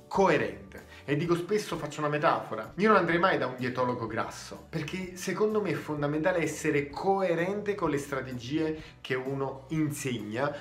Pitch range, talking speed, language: 125-180 Hz, 160 wpm, Italian